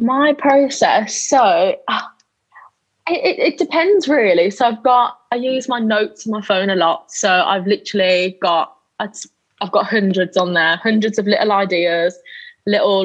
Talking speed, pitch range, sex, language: 155 wpm, 190-240 Hz, female, English